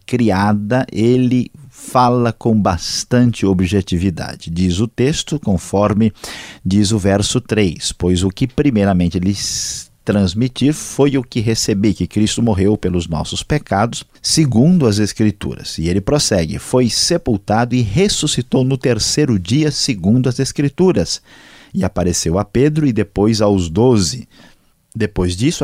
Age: 50-69